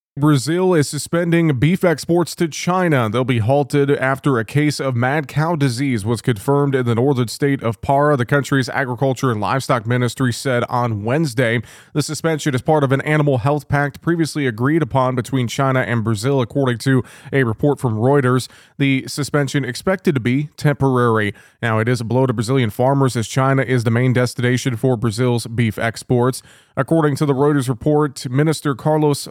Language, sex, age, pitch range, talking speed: English, male, 20-39, 125-145 Hz, 180 wpm